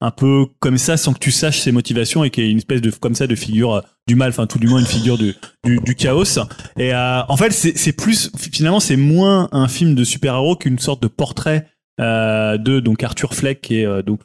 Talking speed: 255 wpm